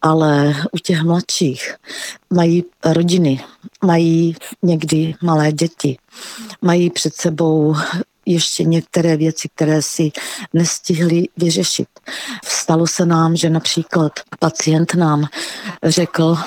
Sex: female